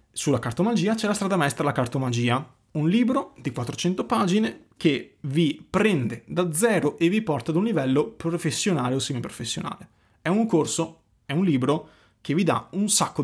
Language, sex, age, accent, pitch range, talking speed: Italian, male, 30-49, native, 125-170 Hz, 170 wpm